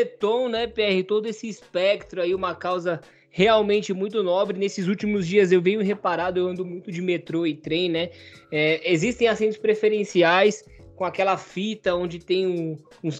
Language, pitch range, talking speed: Portuguese, 180-215 Hz, 160 wpm